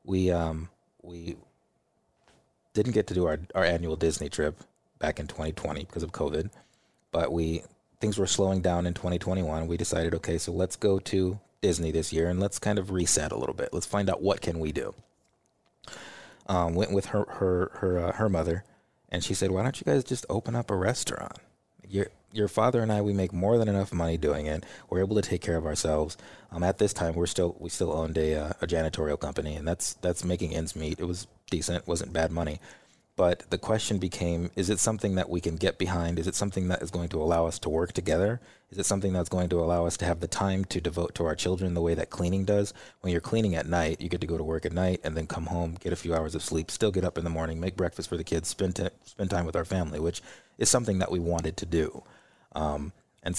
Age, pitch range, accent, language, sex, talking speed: 30-49, 85-95 Hz, American, English, male, 245 wpm